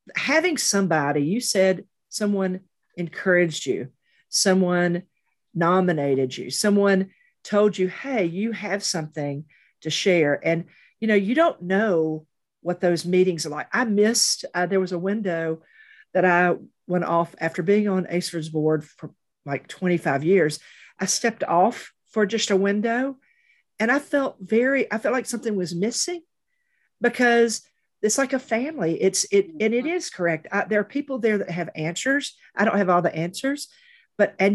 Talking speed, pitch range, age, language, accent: 165 wpm, 165-220 Hz, 50-69, English, American